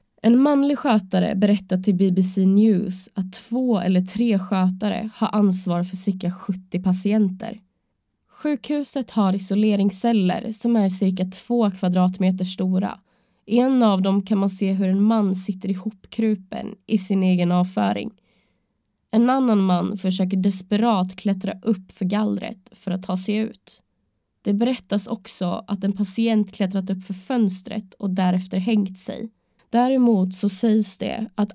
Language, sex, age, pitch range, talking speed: Swedish, female, 20-39, 190-220 Hz, 145 wpm